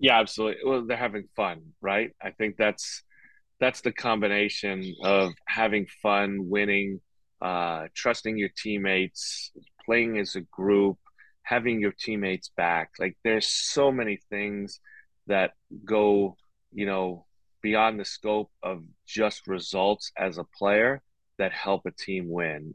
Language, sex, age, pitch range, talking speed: English, male, 30-49, 95-110 Hz, 135 wpm